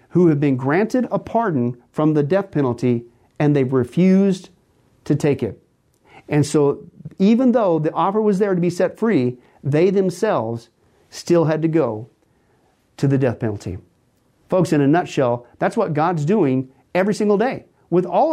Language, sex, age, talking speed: English, male, 50-69, 165 wpm